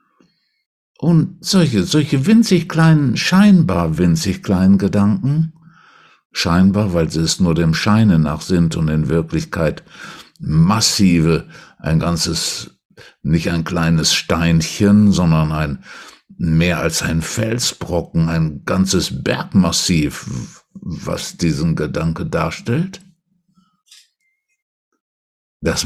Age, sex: 60-79, male